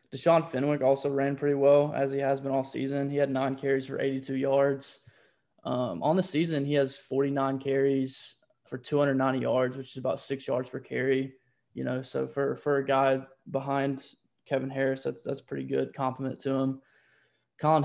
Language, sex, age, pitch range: English, male, 20-39, 135-140 Hz